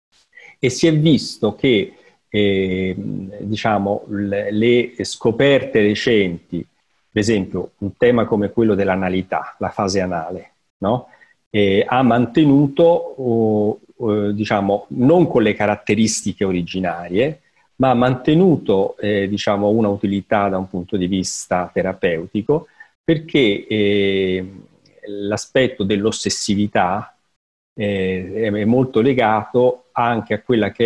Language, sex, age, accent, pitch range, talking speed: Italian, male, 40-59, native, 100-110 Hz, 105 wpm